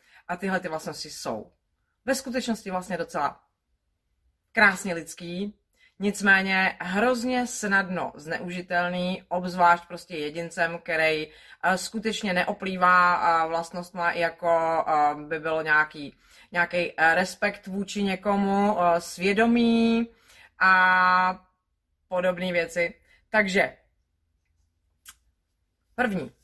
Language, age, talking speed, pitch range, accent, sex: Czech, 30-49, 80 wpm, 170-215 Hz, native, female